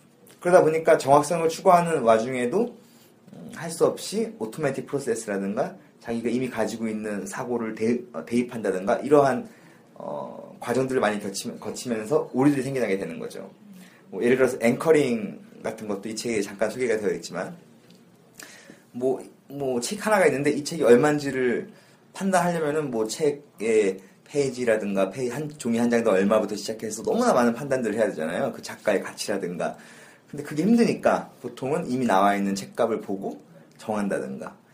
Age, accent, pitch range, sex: 30-49, native, 115-165 Hz, male